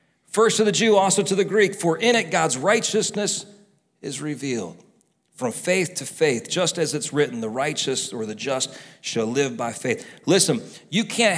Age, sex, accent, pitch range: 40-59, male, American, 155-215 Hz